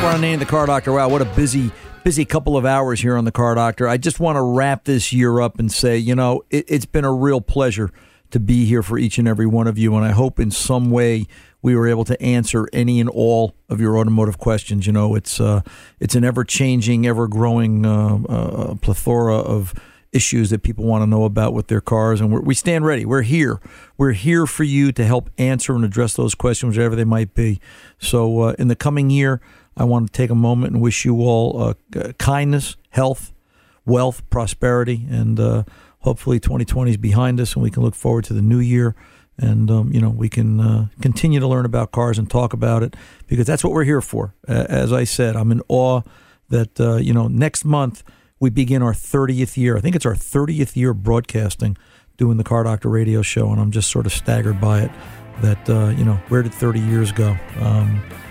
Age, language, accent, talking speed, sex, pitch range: 50-69, English, American, 225 wpm, male, 110-125 Hz